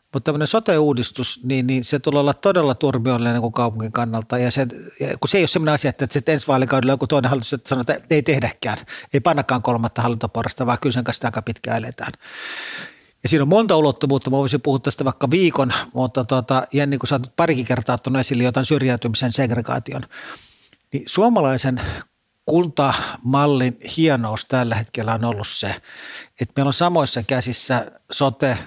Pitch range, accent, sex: 120-140 Hz, native, male